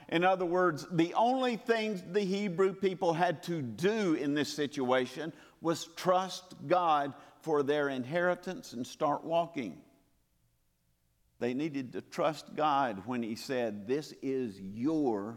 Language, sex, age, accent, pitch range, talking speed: English, male, 50-69, American, 140-195 Hz, 135 wpm